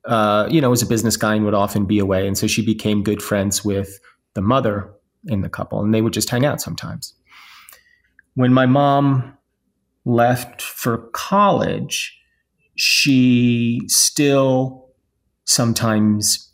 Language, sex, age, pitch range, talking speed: English, male, 30-49, 100-115 Hz, 145 wpm